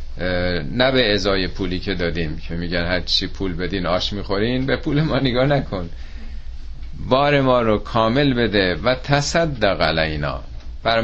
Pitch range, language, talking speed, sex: 85-130 Hz, Persian, 150 wpm, male